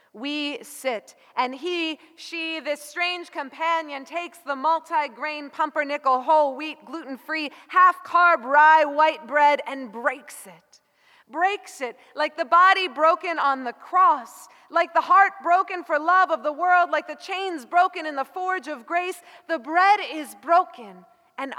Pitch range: 290-355 Hz